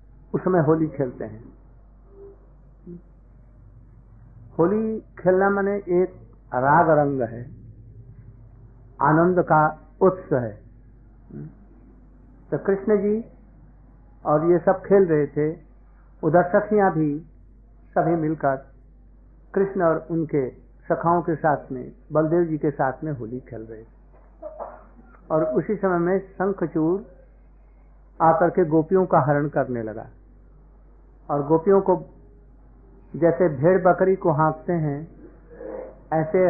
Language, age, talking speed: Hindi, 60-79, 110 wpm